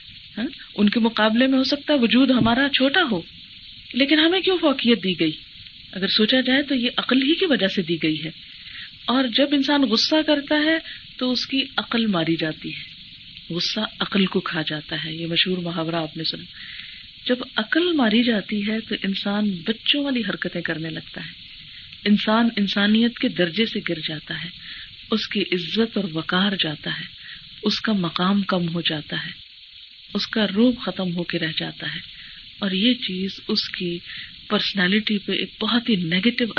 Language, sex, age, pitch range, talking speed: Urdu, female, 50-69, 170-225 Hz, 180 wpm